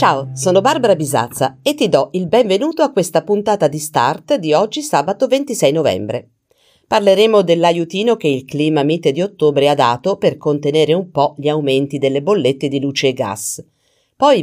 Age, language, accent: 40-59, Italian, native